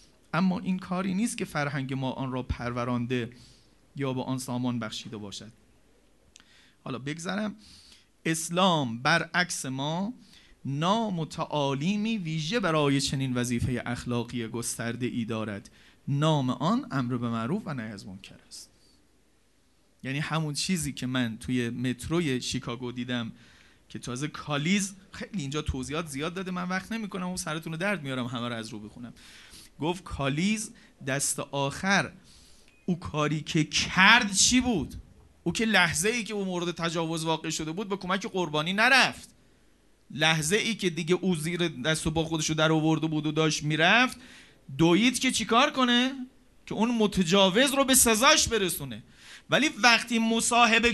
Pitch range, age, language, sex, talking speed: 130-210 Hz, 40-59, Persian, male, 145 wpm